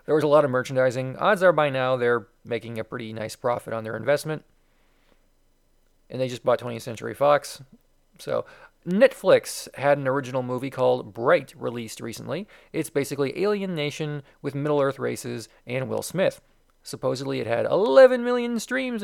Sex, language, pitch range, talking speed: male, English, 125-165 Hz, 165 wpm